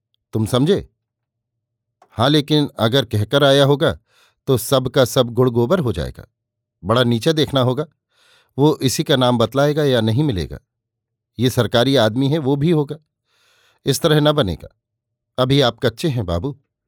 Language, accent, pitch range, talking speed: Hindi, native, 115-140 Hz, 155 wpm